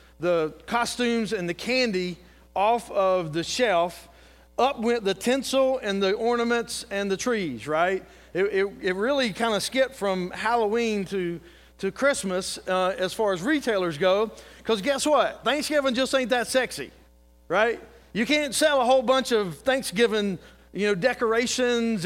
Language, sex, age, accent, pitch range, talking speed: English, male, 40-59, American, 165-235 Hz, 160 wpm